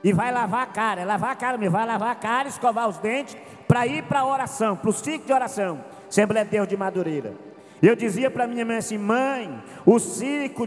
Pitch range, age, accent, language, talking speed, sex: 185-245 Hz, 50-69, Brazilian, Portuguese, 230 wpm, male